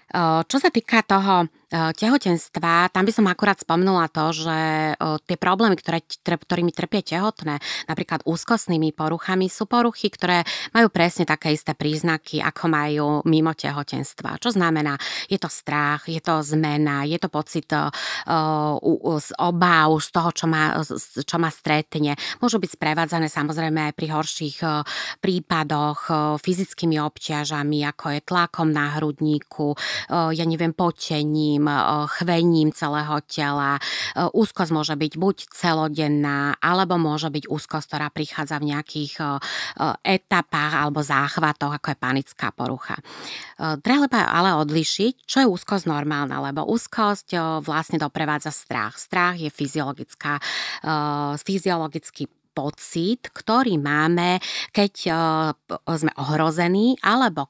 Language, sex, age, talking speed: Slovak, female, 20-39, 120 wpm